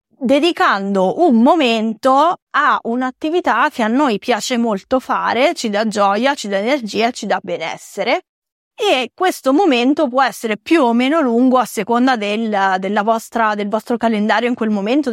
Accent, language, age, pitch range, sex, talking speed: native, Italian, 20-39, 215-260 Hz, female, 160 wpm